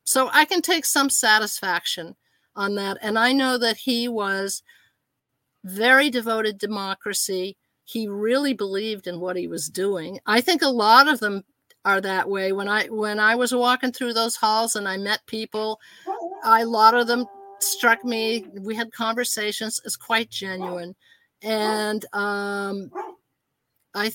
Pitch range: 200-245 Hz